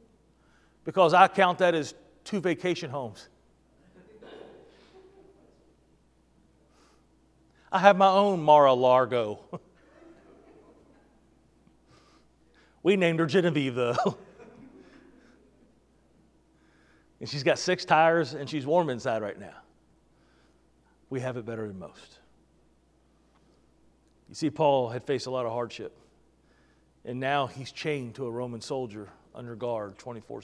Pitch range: 120-155 Hz